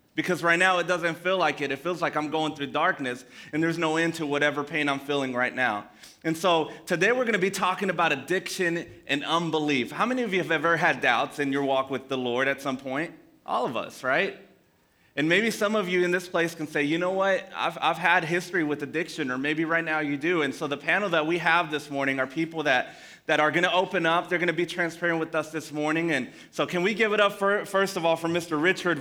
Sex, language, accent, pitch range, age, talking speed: male, English, American, 145-180 Hz, 30-49, 255 wpm